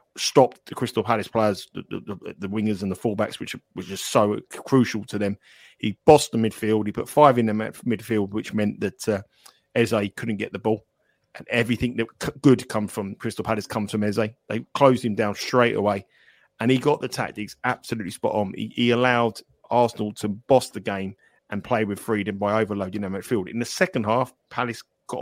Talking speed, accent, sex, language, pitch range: 200 wpm, British, male, English, 110-125 Hz